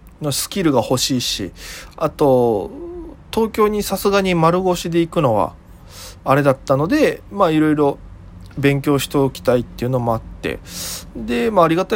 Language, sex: Japanese, male